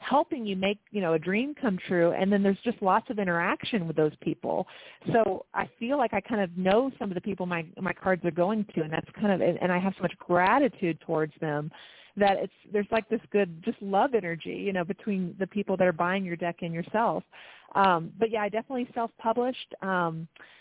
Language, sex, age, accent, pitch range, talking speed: English, female, 30-49, American, 170-205 Hz, 225 wpm